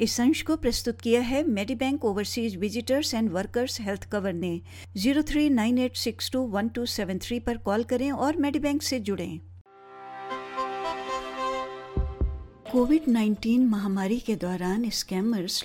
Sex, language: female, Hindi